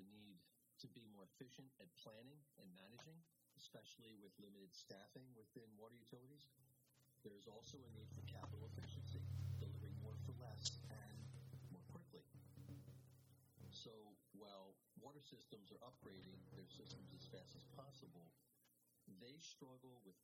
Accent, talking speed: American, 135 wpm